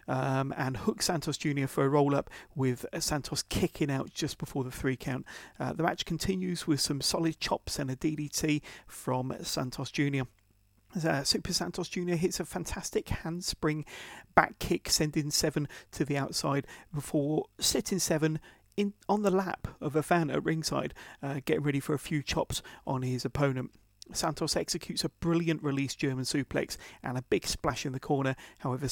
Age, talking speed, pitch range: 40-59, 175 wpm, 135-165 Hz